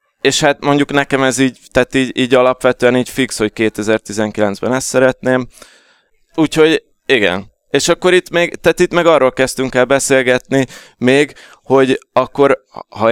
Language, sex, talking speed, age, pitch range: Hungarian, male, 150 wpm, 20-39, 110-135 Hz